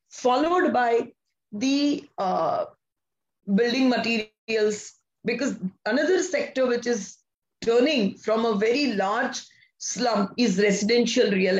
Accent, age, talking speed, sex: Indian, 20-39, 105 wpm, female